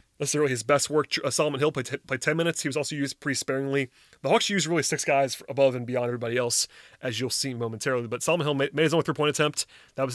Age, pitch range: 30-49, 130-150 Hz